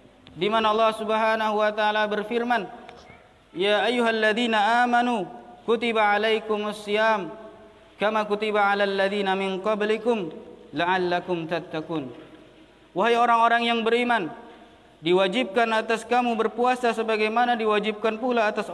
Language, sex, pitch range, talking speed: Indonesian, male, 195-230 Hz, 100 wpm